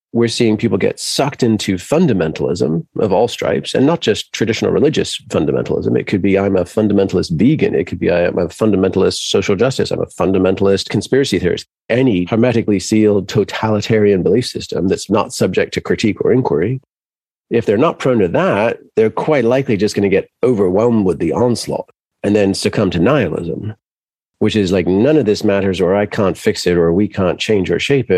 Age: 40-59